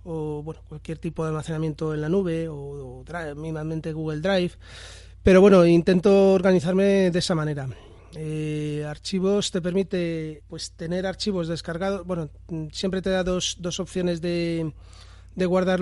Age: 30-49